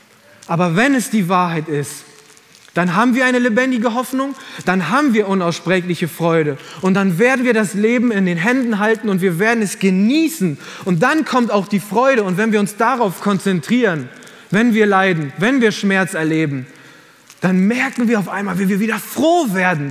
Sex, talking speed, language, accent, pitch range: male, 185 wpm, German, German, 165-225 Hz